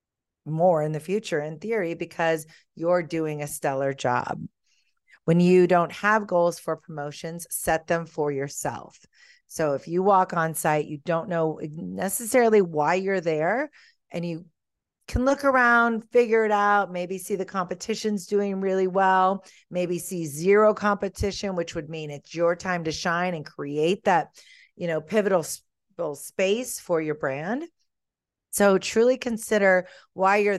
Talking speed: 155 wpm